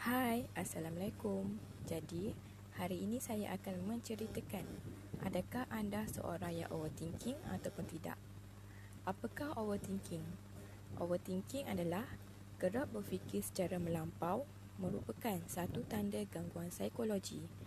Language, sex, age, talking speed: Malay, female, 20-39, 95 wpm